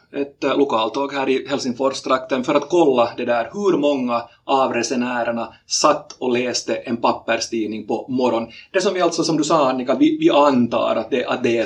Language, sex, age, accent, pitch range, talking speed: Swedish, male, 30-49, Finnish, 115-150 Hz, 195 wpm